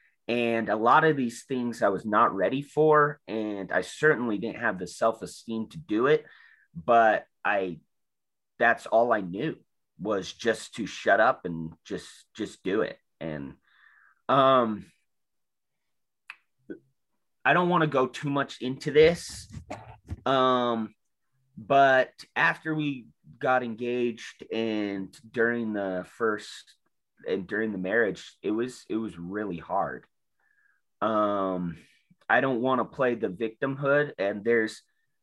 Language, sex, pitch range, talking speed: English, male, 105-140 Hz, 135 wpm